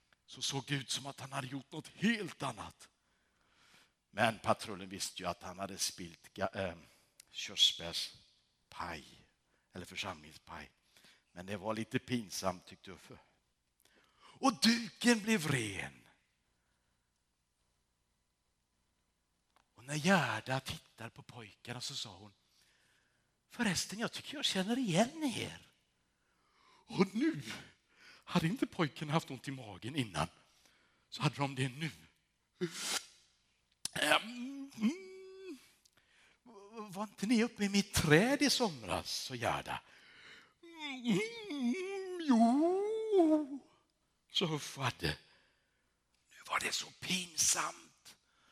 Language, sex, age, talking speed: Swedish, male, 60-79, 110 wpm